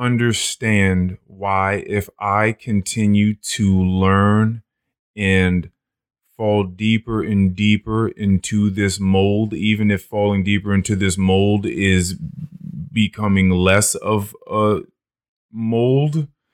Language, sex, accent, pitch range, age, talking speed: English, male, American, 95-120 Hz, 20-39, 100 wpm